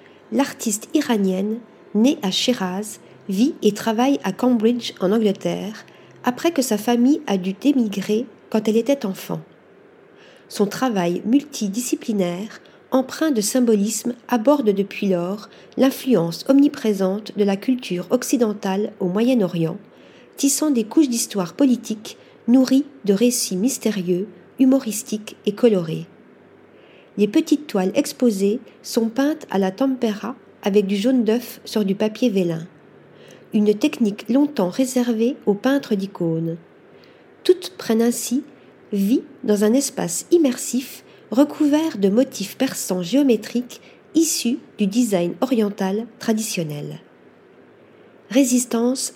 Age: 50-69